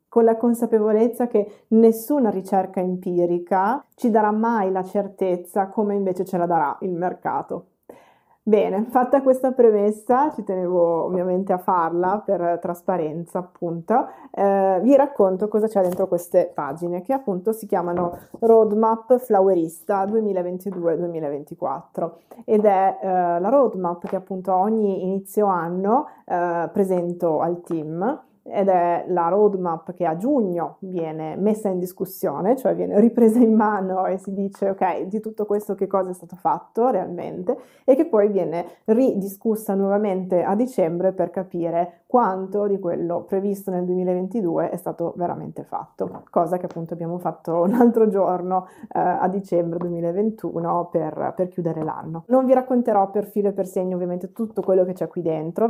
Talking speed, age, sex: 150 wpm, 20-39, female